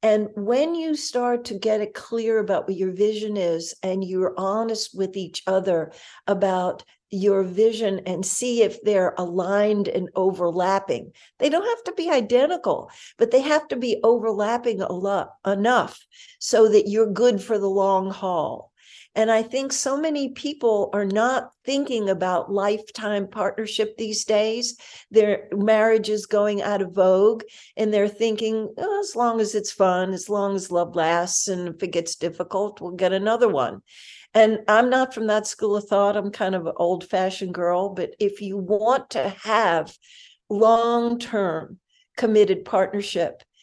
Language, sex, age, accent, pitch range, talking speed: English, female, 60-79, American, 190-225 Hz, 160 wpm